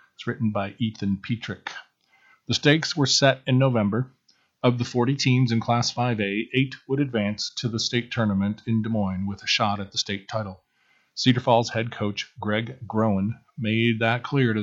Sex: male